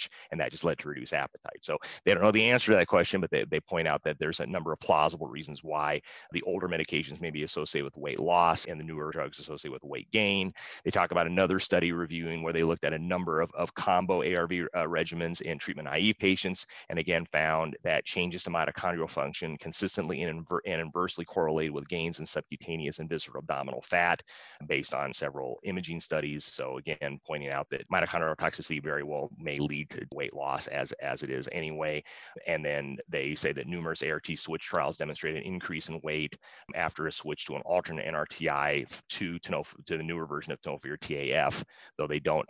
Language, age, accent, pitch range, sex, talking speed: English, 30-49, American, 75-85 Hz, male, 205 wpm